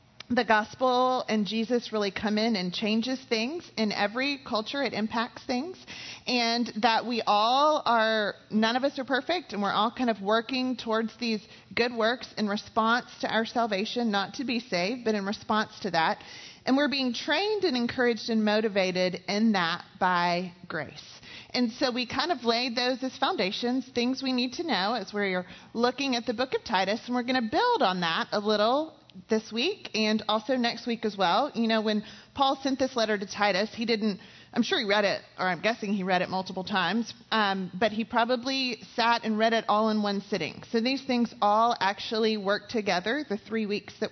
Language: English